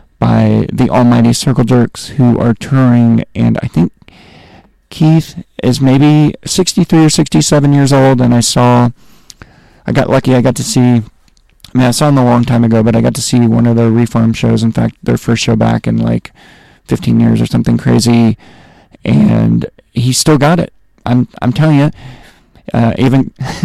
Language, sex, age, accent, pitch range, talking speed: English, male, 30-49, American, 115-135 Hz, 185 wpm